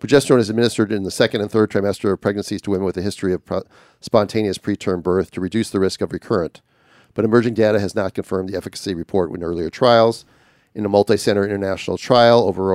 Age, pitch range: 40-59, 95-110 Hz